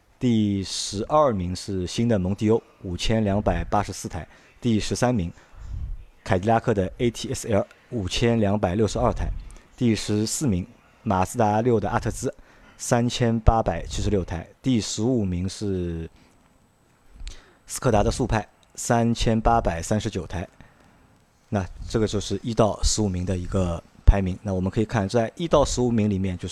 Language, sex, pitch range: Chinese, male, 95-115 Hz